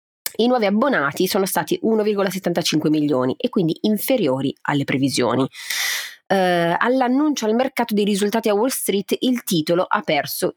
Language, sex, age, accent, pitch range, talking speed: Italian, female, 30-49, native, 155-225 Hz, 135 wpm